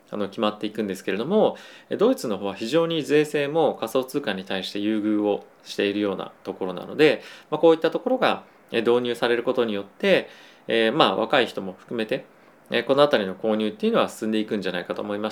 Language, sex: Japanese, male